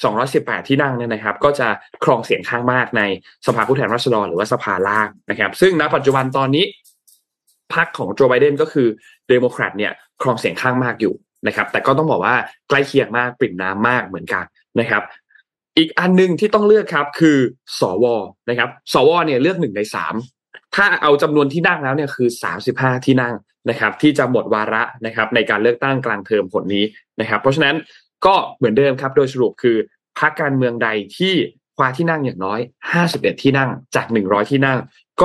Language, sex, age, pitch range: Thai, male, 20-39, 115-150 Hz